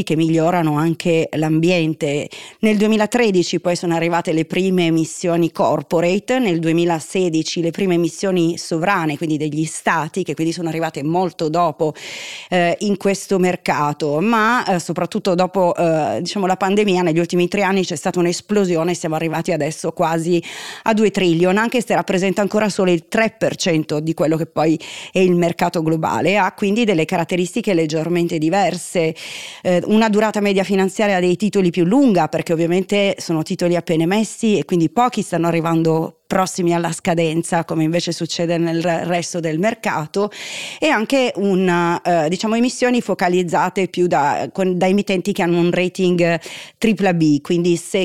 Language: Italian